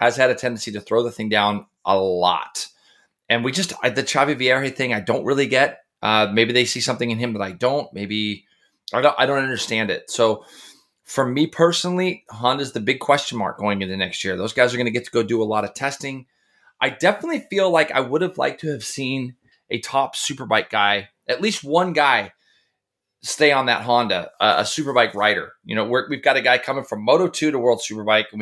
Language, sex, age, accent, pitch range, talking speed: English, male, 30-49, American, 110-140 Hz, 230 wpm